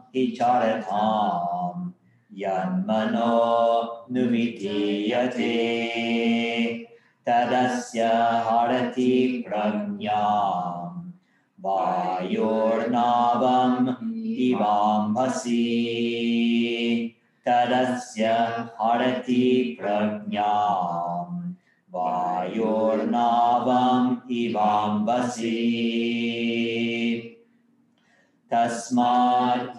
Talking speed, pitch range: 35 wpm, 110-125 Hz